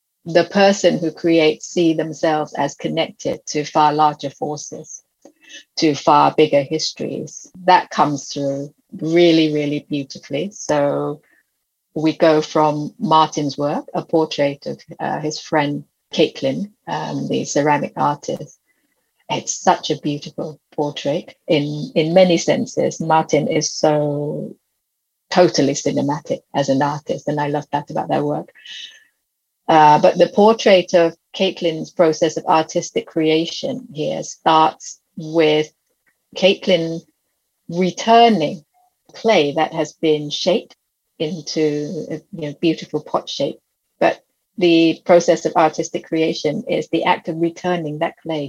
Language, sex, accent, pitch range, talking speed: English, female, British, 150-170 Hz, 125 wpm